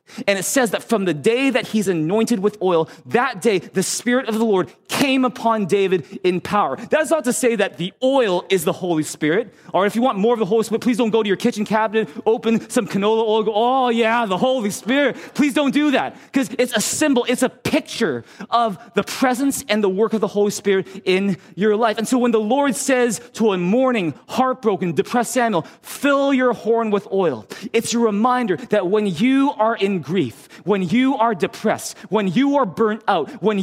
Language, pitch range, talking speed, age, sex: English, 185-245 Hz, 215 wpm, 30-49, male